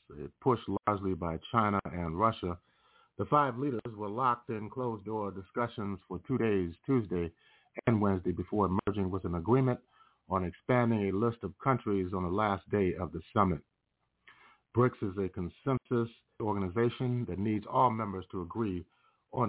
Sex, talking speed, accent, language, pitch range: male, 155 wpm, American, English, 90-115 Hz